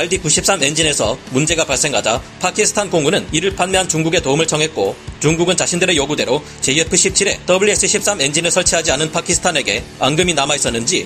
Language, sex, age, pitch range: Korean, male, 40-59, 155-190 Hz